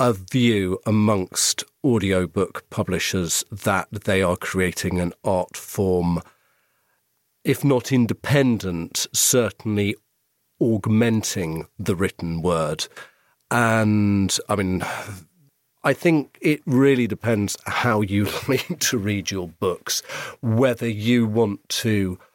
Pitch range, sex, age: 95-115 Hz, male, 40-59